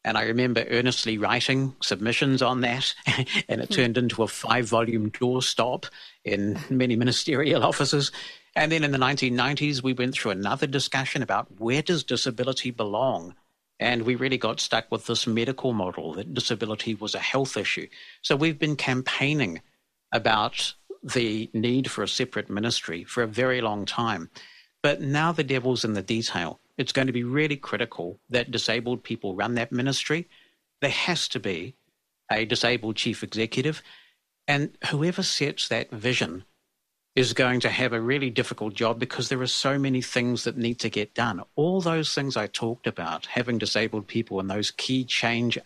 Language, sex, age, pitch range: English, male, 60-79, 115-135 Hz